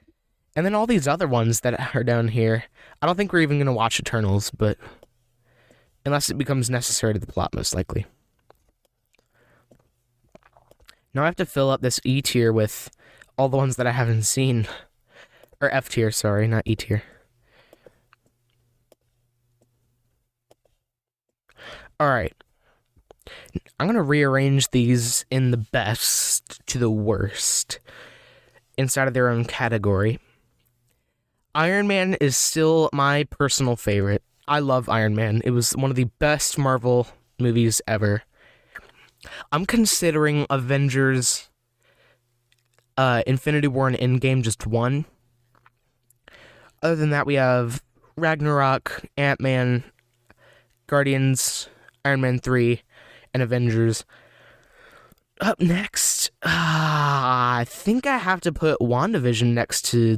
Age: 20-39